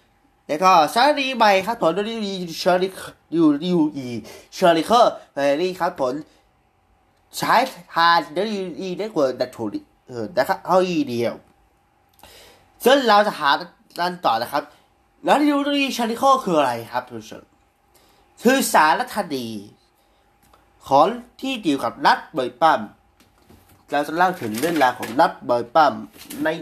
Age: 20-39